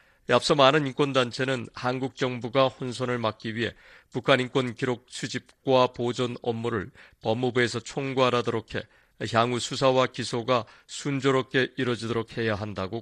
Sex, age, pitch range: male, 40-59, 115-130 Hz